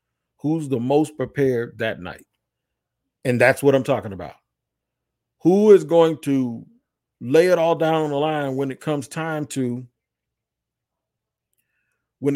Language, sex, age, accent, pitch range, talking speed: English, male, 50-69, American, 130-165 Hz, 140 wpm